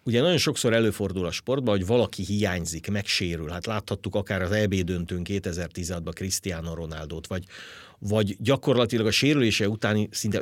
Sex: male